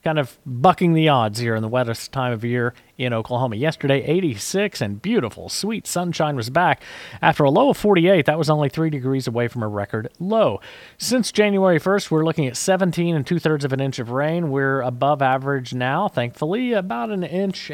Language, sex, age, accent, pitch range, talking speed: English, male, 40-59, American, 120-160 Hz, 200 wpm